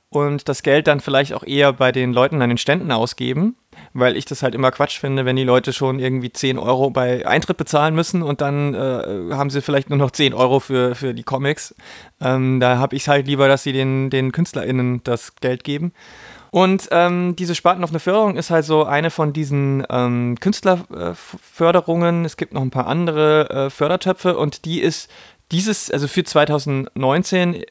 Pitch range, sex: 135-165 Hz, male